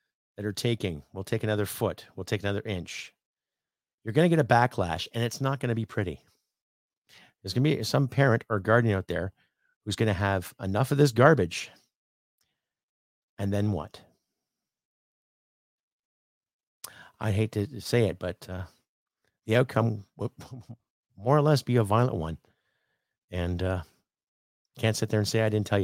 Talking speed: 165 wpm